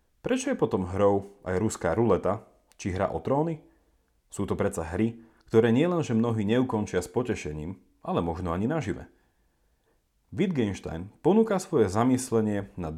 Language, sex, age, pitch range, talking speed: Slovak, male, 40-59, 90-125 Hz, 140 wpm